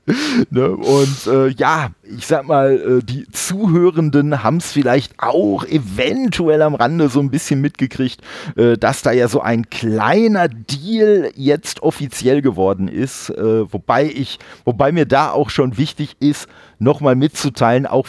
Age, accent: 40-59, German